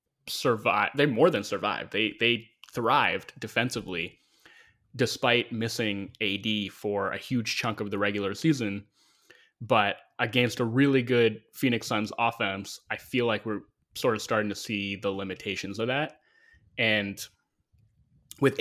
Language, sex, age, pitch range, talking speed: English, male, 20-39, 105-125 Hz, 140 wpm